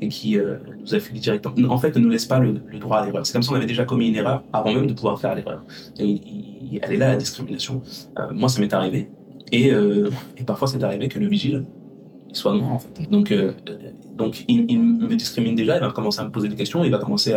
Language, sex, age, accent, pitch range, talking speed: French, male, 30-49, French, 115-145 Hz, 275 wpm